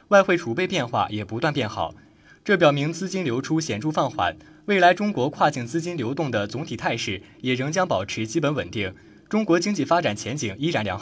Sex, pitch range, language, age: male, 110-170 Hz, Chinese, 20-39